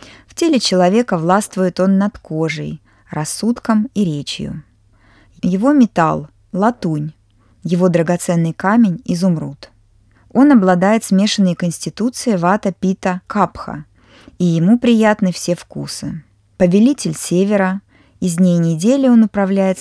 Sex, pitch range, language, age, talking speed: female, 155-205 Hz, Russian, 20-39, 110 wpm